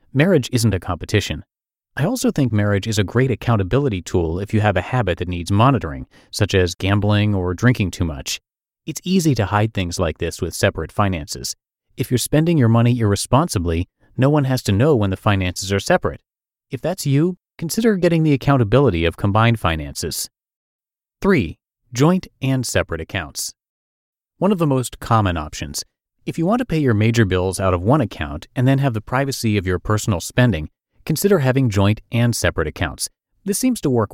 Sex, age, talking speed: male, 30-49, 185 wpm